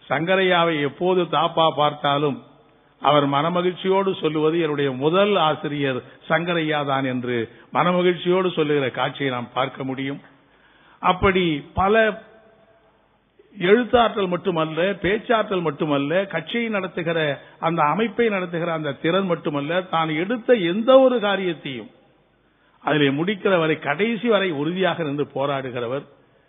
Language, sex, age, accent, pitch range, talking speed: Tamil, male, 50-69, native, 145-195 Hz, 100 wpm